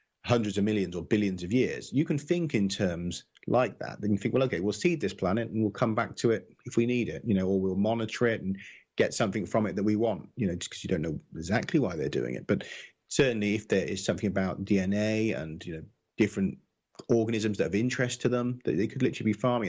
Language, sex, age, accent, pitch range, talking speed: English, male, 30-49, British, 95-115 Hz, 255 wpm